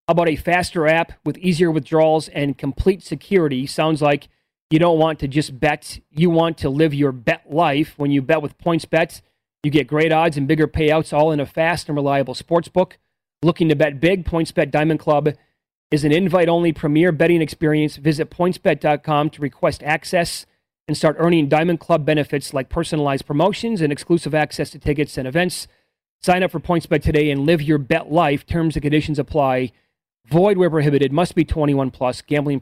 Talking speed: 190 wpm